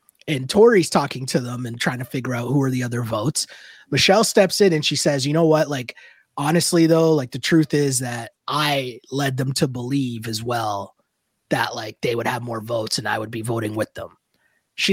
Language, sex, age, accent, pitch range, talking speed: English, male, 20-39, American, 135-170 Hz, 215 wpm